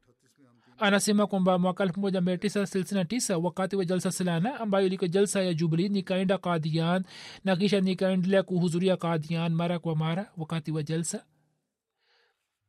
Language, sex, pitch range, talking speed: Swahili, male, 170-195 Hz, 125 wpm